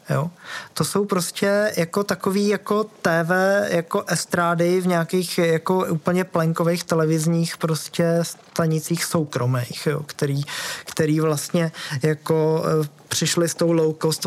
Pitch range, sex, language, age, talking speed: 150-170 Hz, male, Czech, 20-39, 120 wpm